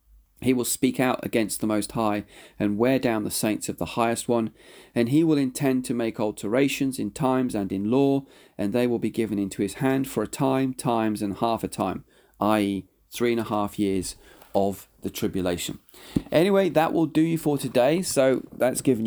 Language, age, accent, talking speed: English, 40-59, British, 200 wpm